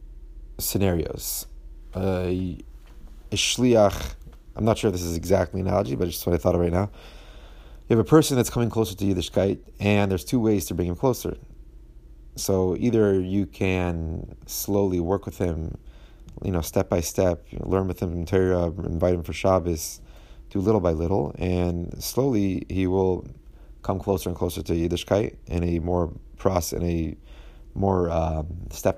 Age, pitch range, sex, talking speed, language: 30-49, 85-100 Hz, male, 175 wpm, English